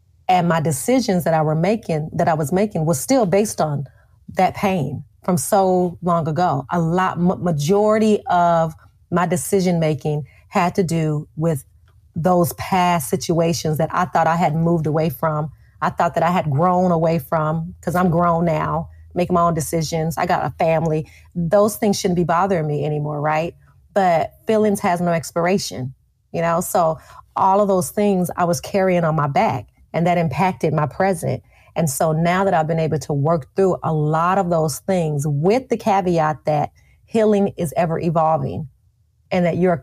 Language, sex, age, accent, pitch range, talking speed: English, female, 30-49, American, 155-185 Hz, 180 wpm